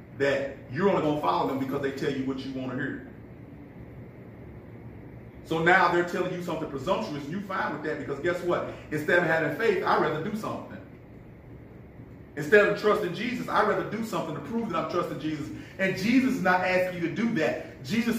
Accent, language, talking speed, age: American, English, 210 wpm, 40-59